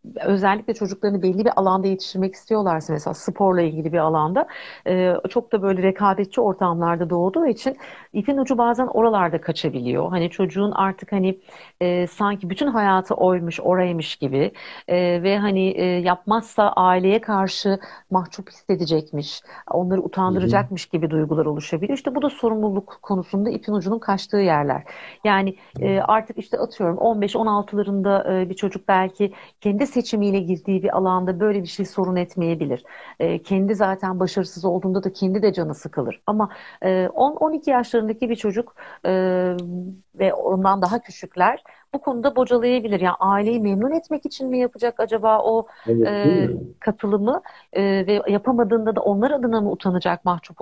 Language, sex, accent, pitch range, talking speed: Turkish, female, native, 180-220 Hz, 145 wpm